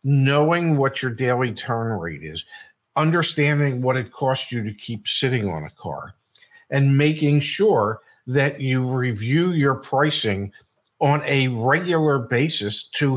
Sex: male